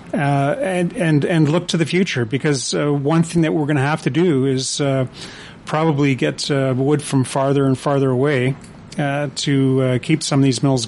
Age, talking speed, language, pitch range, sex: 30-49, 210 wpm, English, 135-155 Hz, male